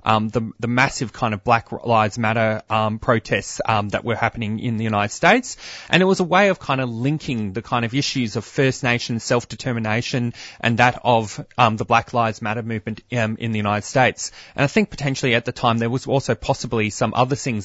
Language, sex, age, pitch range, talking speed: English, male, 20-39, 115-140 Hz, 220 wpm